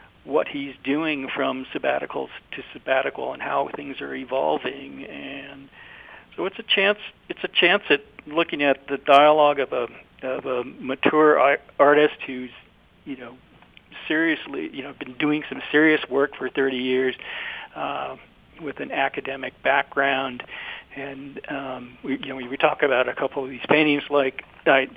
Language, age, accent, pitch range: English, 50-69, American, 135-155 Hz